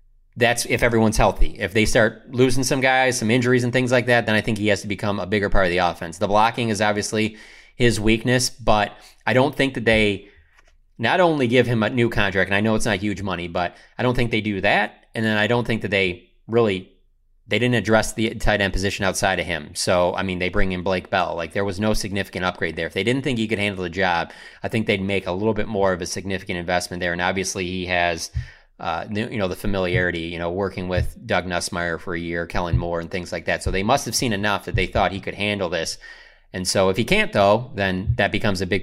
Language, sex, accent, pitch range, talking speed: English, male, American, 90-110 Hz, 255 wpm